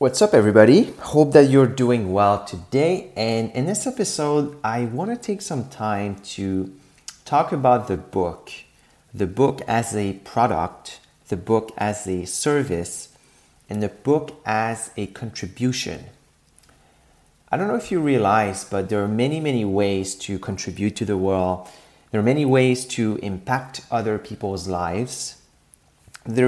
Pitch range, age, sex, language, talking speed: 95-125 Hz, 30-49, male, English, 150 wpm